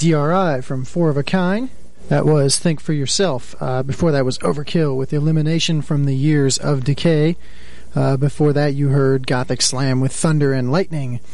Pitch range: 130-160 Hz